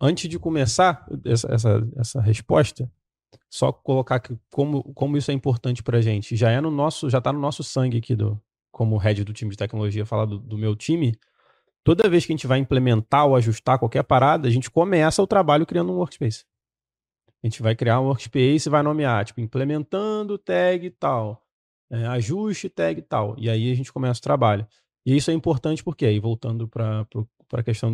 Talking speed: 200 wpm